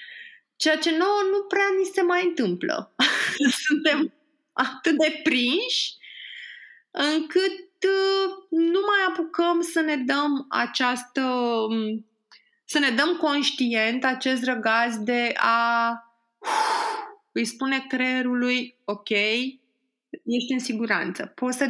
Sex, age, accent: female, 20-39, native